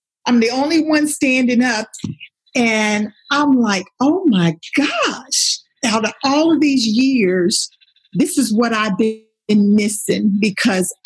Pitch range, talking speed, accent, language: 210-275 Hz, 135 wpm, American, English